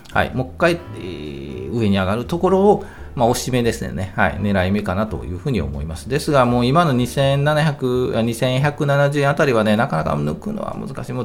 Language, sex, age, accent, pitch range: Japanese, male, 40-59, native, 90-135 Hz